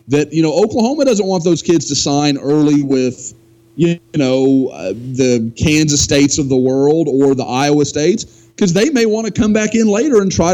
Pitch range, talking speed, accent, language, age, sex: 140-190 Hz, 205 wpm, American, English, 30-49, male